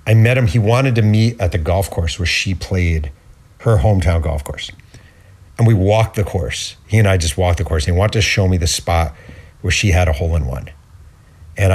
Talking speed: 230 wpm